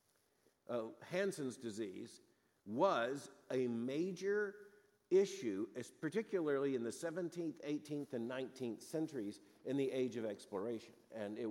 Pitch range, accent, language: 120-160 Hz, American, English